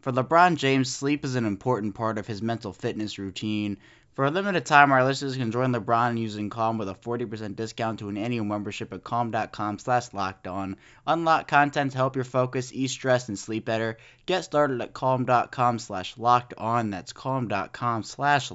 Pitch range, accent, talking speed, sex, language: 110-135 Hz, American, 190 wpm, male, English